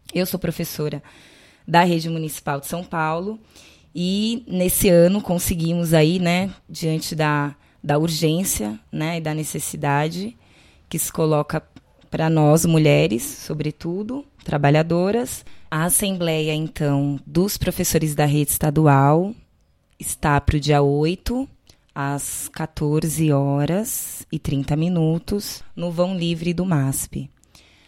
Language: Portuguese